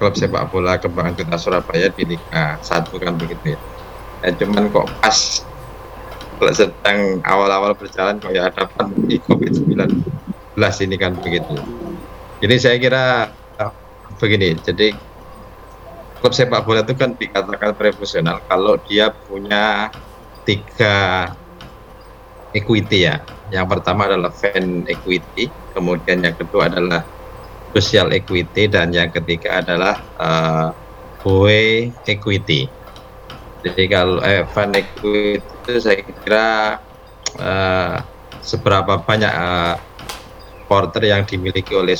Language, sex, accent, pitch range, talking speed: Indonesian, male, native, 90-105 Hz, 110 wpm